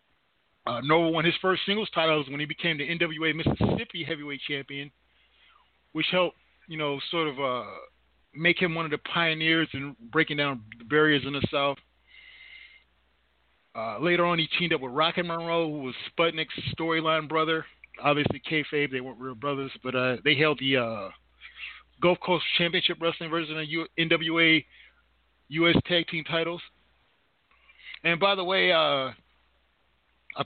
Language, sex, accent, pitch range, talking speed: English, male, American, 140-170 Hz, 155 wpm